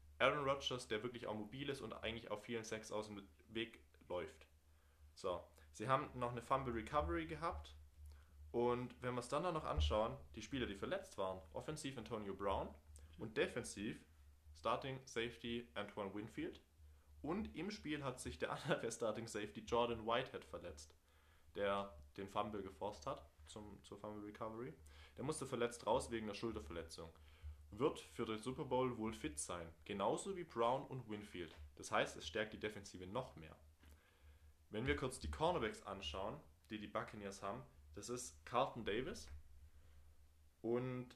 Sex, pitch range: male, 75-120 Hz